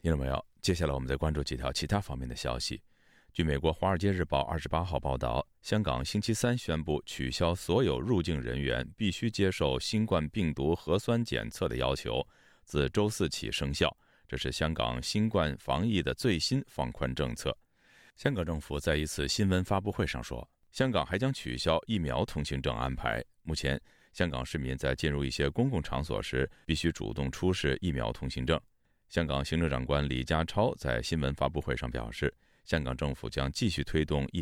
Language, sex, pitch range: Chinese, male, 65-90 Hz